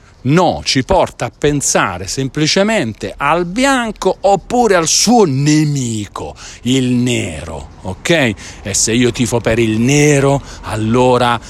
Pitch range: 105-145 Hz